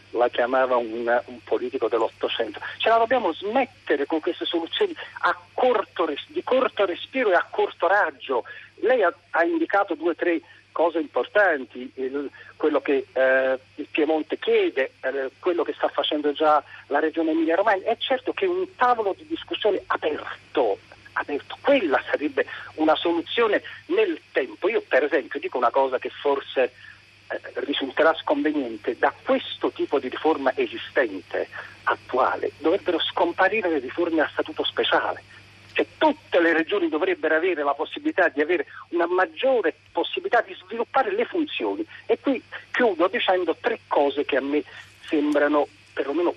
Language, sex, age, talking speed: Italian, male, 50-69, 150 wpm